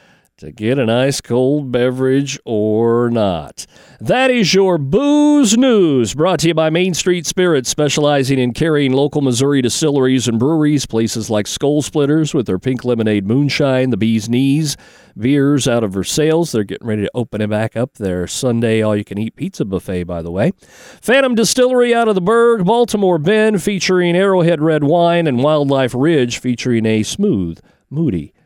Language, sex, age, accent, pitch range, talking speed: English, male, 40-59, American, 125-195 Hz, 175 wpm